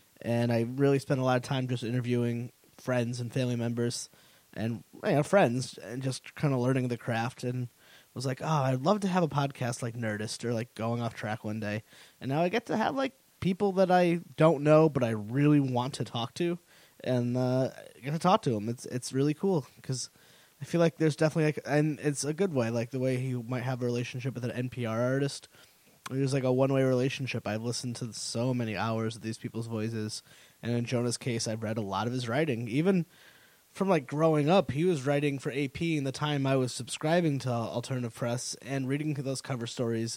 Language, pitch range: English, 120-150 Hz